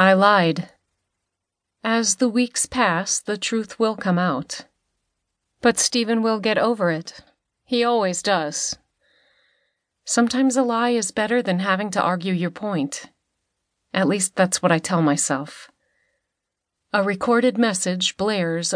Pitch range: 170-210 Hz